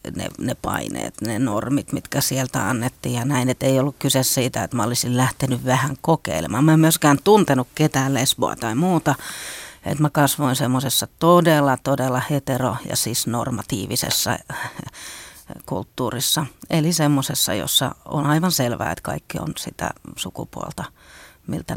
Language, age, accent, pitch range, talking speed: Finnish, 40-59, native, 130-165 Hz, 145 wpm